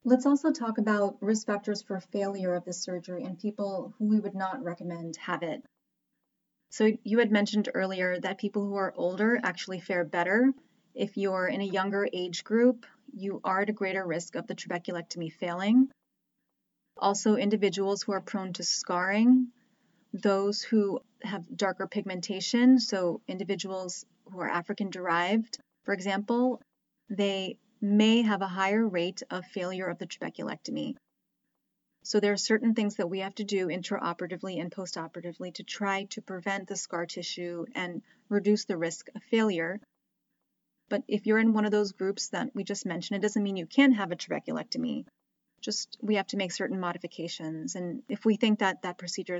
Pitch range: 180-215 Hz